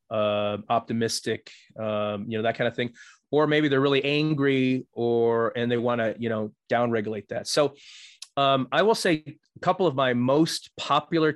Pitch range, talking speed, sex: 120-155 Hz, 180 wpm, male